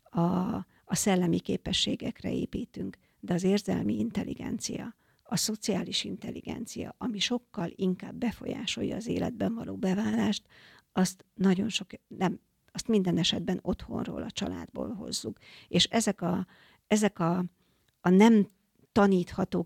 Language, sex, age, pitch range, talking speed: Hungarian, female, 50-69, 180-205 Hz, 120 wpm